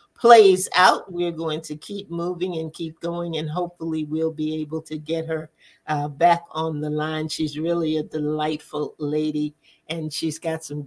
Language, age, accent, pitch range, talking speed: English, 50-69, American, 155-195 Hz, 175 wpm